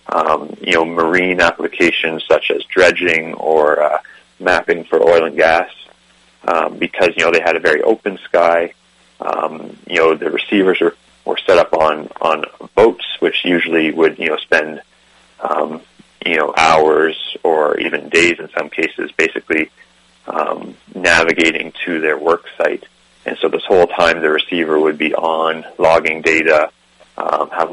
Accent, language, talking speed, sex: American, English, 155 wpm, male